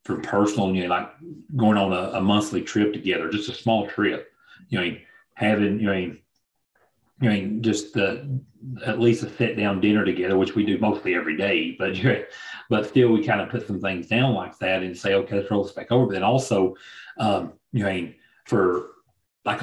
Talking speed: 210 wpm